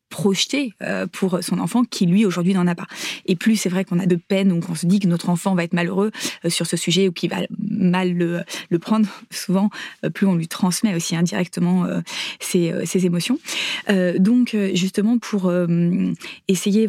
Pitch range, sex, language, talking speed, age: 175-205 Hz, female, French, 185 wpm, 20-39